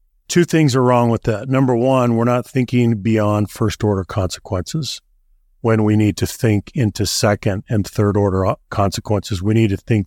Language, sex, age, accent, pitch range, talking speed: English, male, 40-59, American, 105-125 Hz, 165 wpm